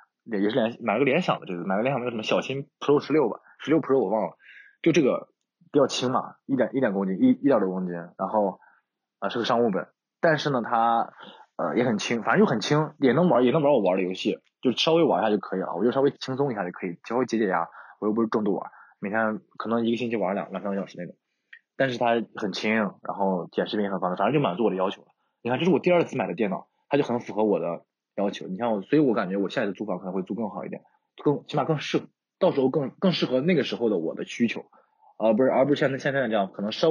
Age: 20-39